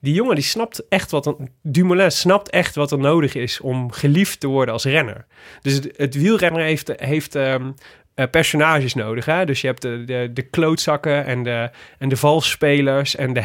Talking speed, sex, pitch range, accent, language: 195 wpm, male, 130-160 Hz, Dutch, Dutch